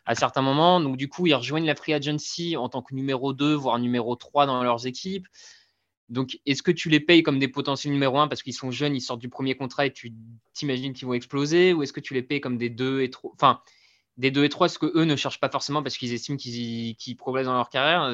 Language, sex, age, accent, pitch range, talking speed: French, male, 20-39, French, 120-150 Hz, 250 wpm